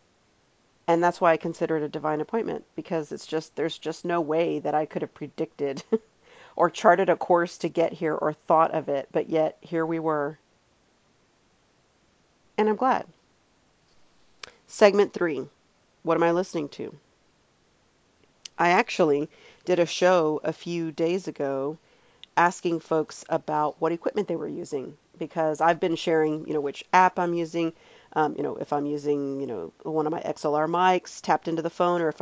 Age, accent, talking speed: 40-59, American, 175 wpm